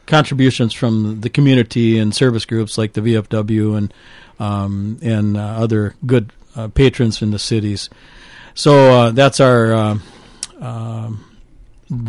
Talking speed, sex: 135 wpm, male